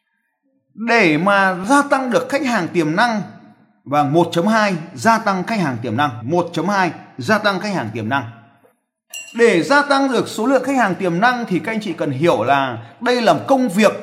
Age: 30-49